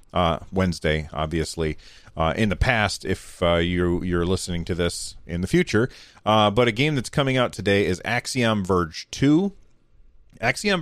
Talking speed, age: 165 wpm, 40-59